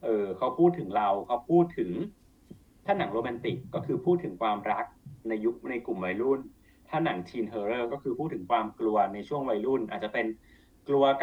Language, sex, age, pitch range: Thai, male, 30-49, 110-155 Hz